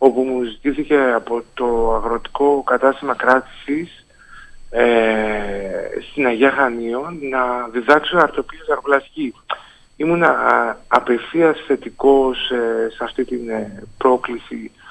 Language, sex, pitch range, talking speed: Greek, male, 125-155 Hz, 95 wpm